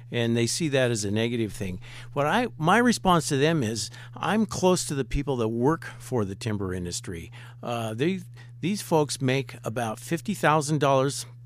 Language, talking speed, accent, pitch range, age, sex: English, 175 wpm, American, 115-145 Hz, 50-69, male